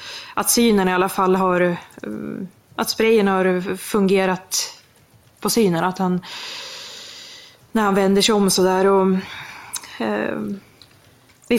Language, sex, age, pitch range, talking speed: Swedish, female, 20-39, 185-215 Hz, 115 wpm